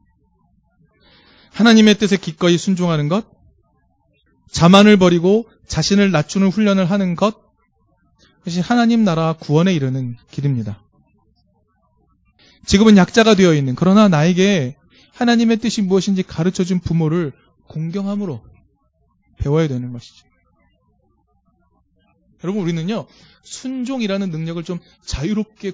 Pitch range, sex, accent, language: 145-220 Hz, male, native, Korean